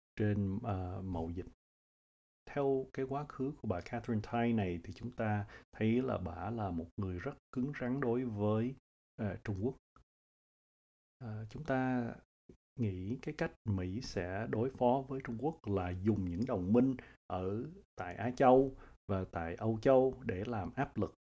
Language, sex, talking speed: Vietnamese, male, 170 wpm